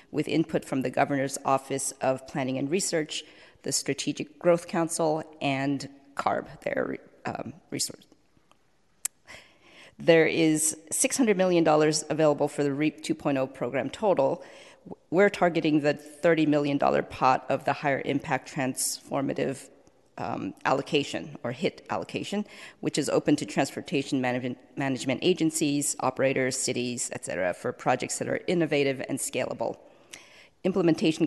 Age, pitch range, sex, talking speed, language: 40-59, 140-165 Hz, female, 125 wpm, English